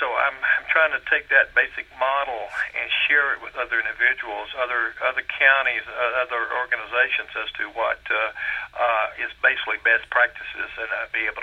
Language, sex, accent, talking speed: English, male, American, 180 wpm